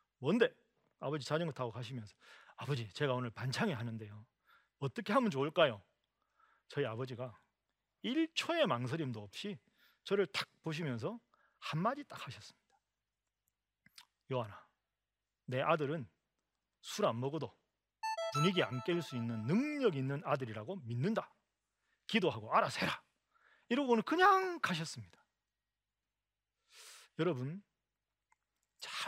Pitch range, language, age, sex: 125-210 Hz, Korean, 40-59, male